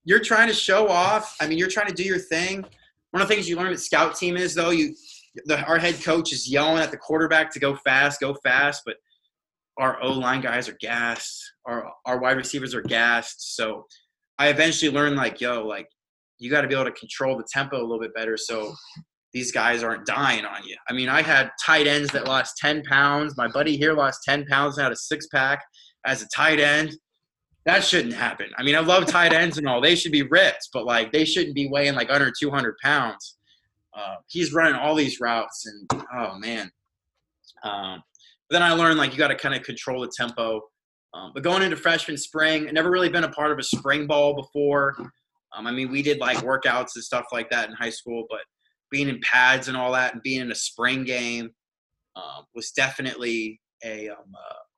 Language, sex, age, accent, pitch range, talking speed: English, male, 20-39, American, 125-160 Hz, 220 wpm